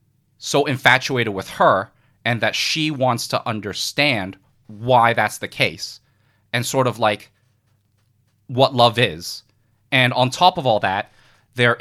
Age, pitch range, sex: 30-49, 105-125 Hz, male